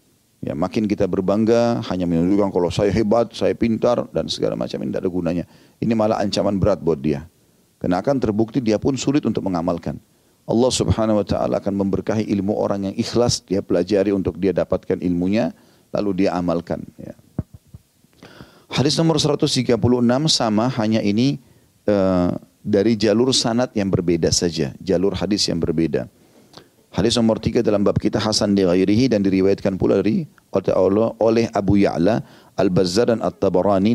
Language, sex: Indonesian, male